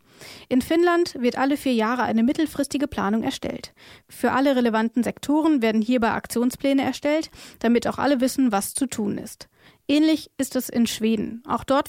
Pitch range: 230-270 Hz